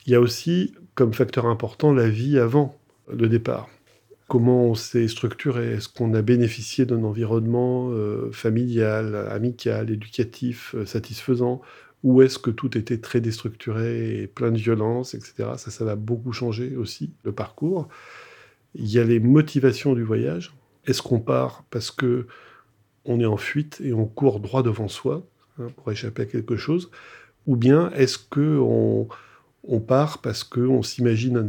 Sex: male